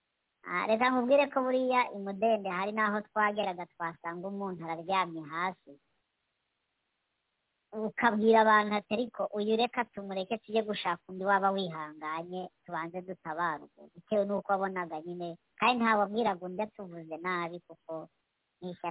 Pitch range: 165-205 Hz